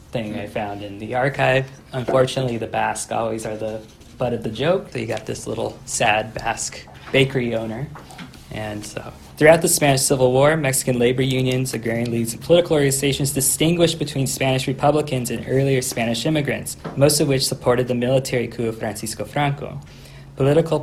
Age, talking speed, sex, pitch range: 20-39, 170 wpm, male, 115-140 Hz